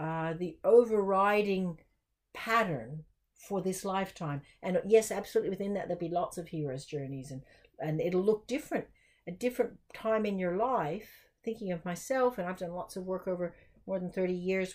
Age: 60-79